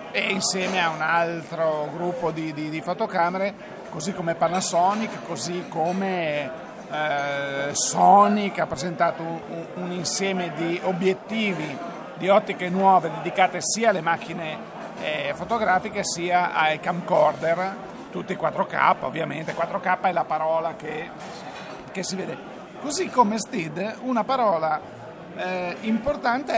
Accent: native